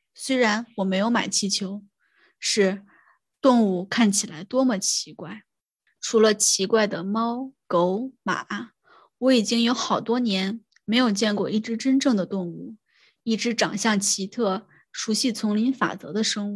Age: 20-39